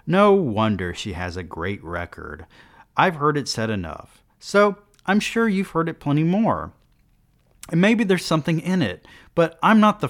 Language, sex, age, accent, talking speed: English, male, 30-49, American, 180 wpm